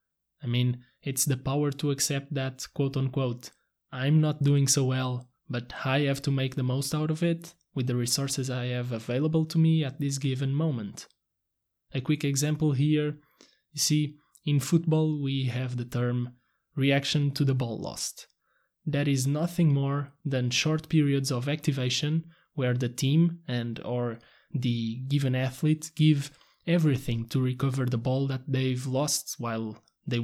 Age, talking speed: 20-39, 160 wpm